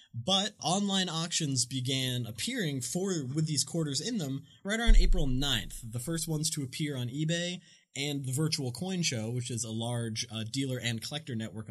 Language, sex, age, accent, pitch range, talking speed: English, male, 20-39, American, 120-165 Hz, 185 wpm